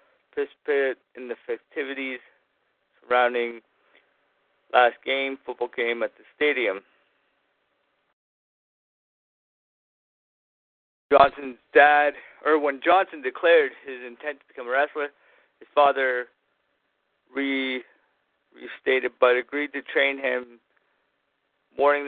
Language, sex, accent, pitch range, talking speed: English, male, American, 125-145 Hz, 95 wpm